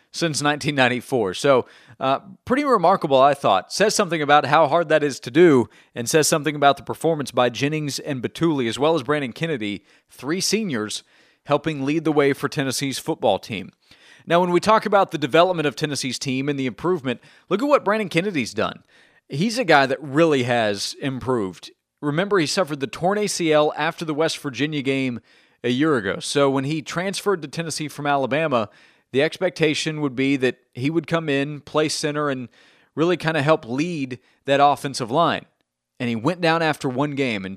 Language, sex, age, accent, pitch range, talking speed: English, male, 40-59, American, 135-160 Hz, 190 wpm